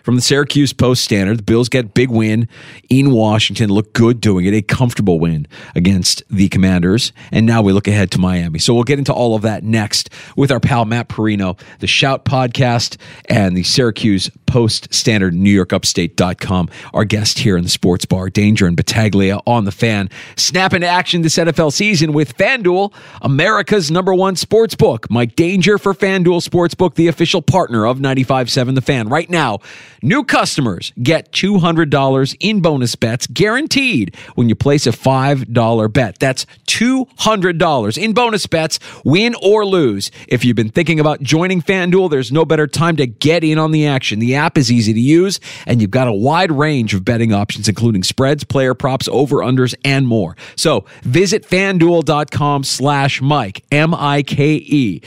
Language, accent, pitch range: English, American, 110-160 Hz